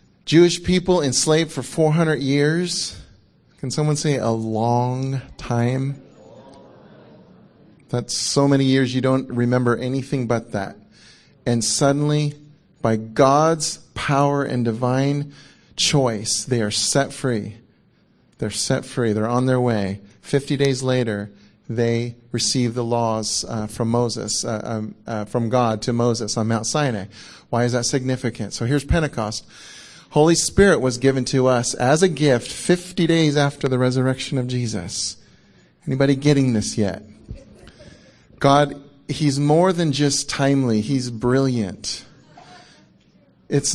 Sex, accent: male, American